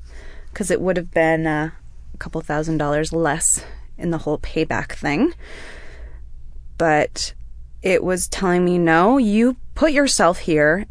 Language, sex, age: English, female, 20-39